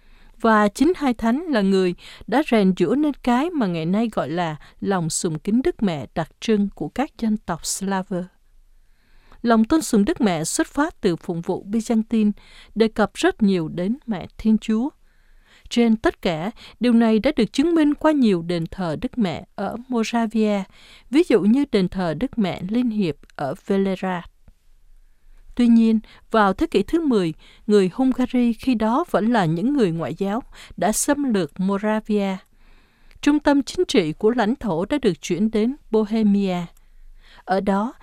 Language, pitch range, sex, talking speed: Vietnamese, 190-245 Hz, female, 175 wpm